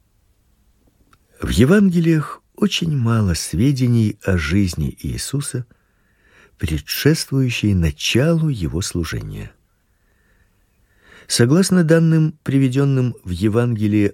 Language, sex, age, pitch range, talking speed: Russian, male, 50-69, 100-130 Hz, 70 wpm